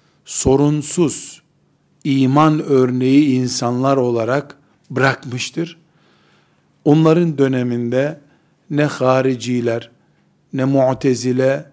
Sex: male